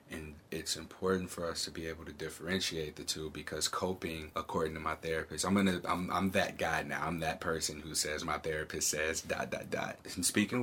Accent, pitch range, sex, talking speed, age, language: American, 80-95 Hz, male, 210 wpm, 30-49, English